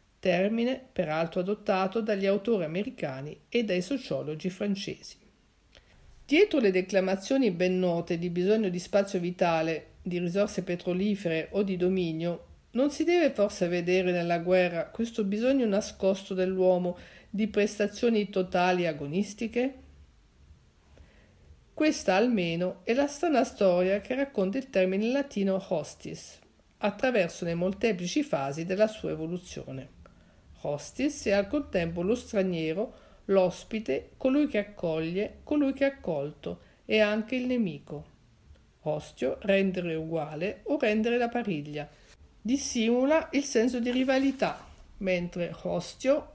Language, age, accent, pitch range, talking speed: Italian, 50-69, native, 175-235 Hz, 120 wpm